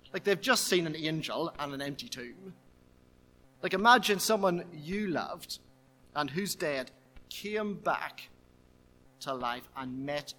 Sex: male